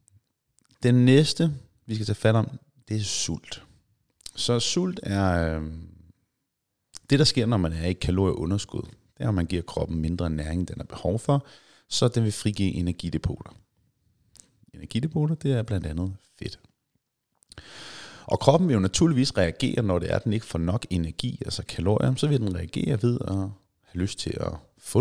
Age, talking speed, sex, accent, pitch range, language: 30-49, 170 wpm, male, native, 90-120 Hz, Danish